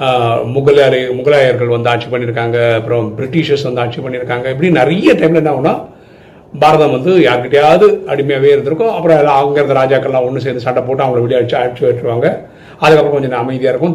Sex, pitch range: male, 120-155 Hz